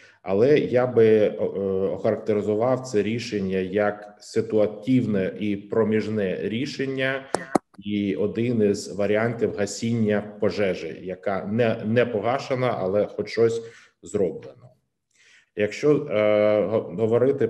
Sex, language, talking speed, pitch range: male, Ukrainian, 105 wpm, 100-115 Hz